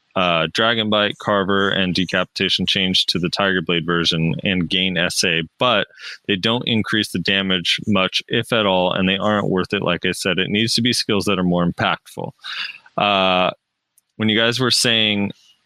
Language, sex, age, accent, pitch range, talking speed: English, male, 20-39, American, 90-105 Hz, 185 wpm